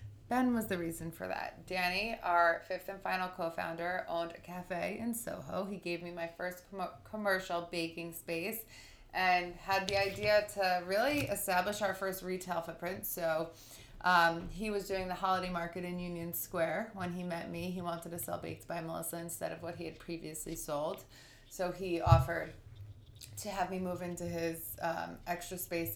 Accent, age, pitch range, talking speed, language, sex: American, 20-39, 165-190 Hz, 180 wpm, English, female